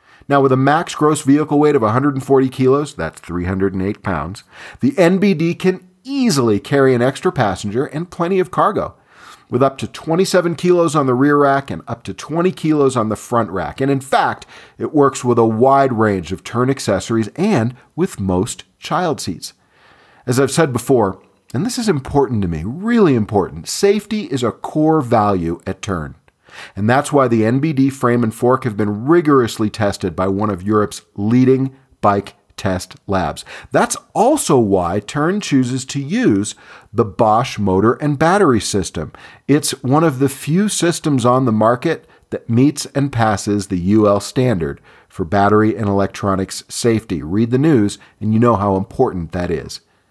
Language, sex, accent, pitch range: English, male, American, 105-150 Hz